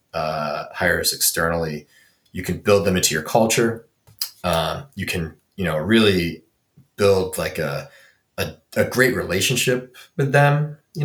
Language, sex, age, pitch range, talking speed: English, male, 20-39, 95-130 Hz, 140 wpm